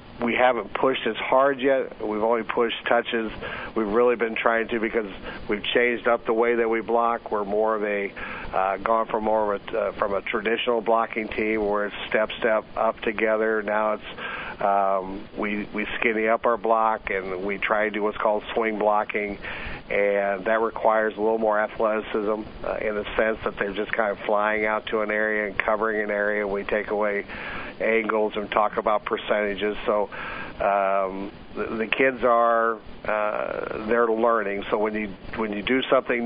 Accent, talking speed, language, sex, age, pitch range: American, 200 wpm, English, male, 50-69, 105-115 Hz